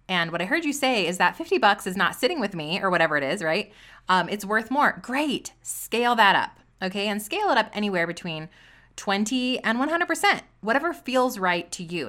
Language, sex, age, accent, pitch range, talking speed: English, female, 20-39, American, 175-245 Hz, 215 wpm